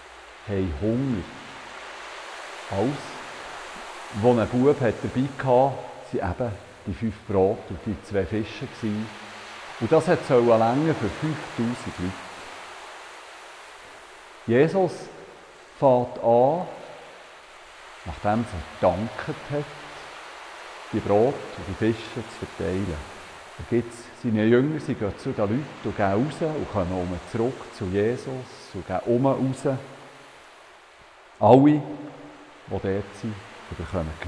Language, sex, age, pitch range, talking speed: German, male, 50-69, 95-125 Hz, 110 wpm